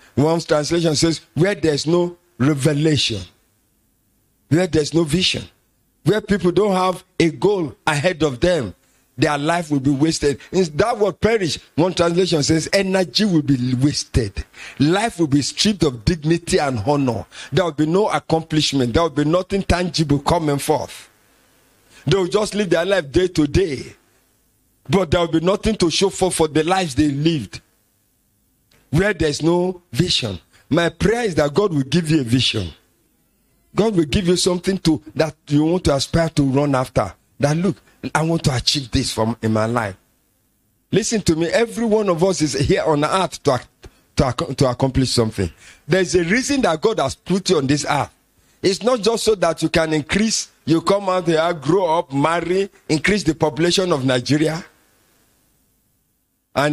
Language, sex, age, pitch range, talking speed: English, male, 50-69, 140-180 Hz, 175 wpm